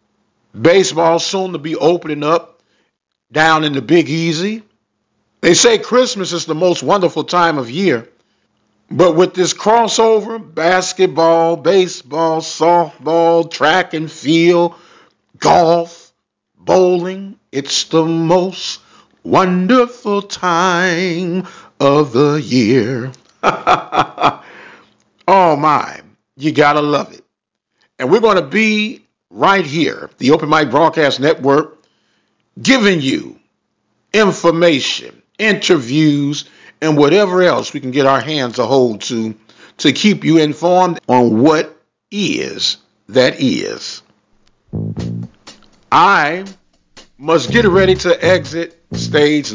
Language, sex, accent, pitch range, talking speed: English, male, American, 150-190 Hz, 110 wpm